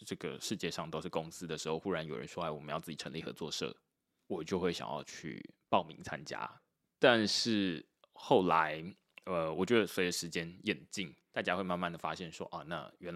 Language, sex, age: Chinese, male, 20-39